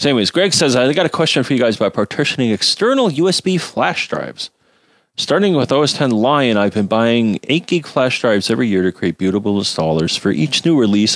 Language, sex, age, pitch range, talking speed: English, male, 40-59, 90-145 Hz, 205 wpm